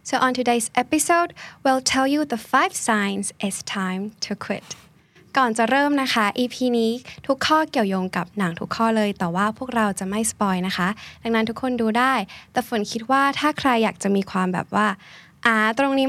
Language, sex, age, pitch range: Thai, female, 10-29, 200-250 Hz